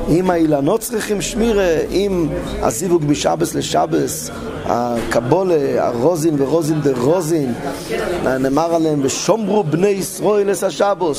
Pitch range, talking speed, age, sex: 130-165 Hz, 105 wpm, 30-49, male